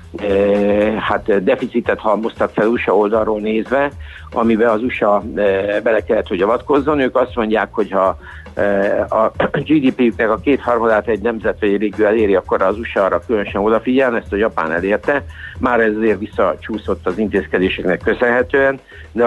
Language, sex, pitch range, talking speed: Hungarian, male, 100-120 Hz, 155 wpm